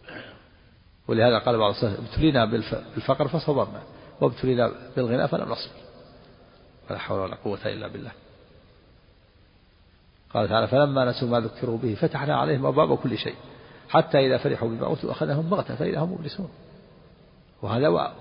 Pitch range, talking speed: 105-120 Hz, 125 wpm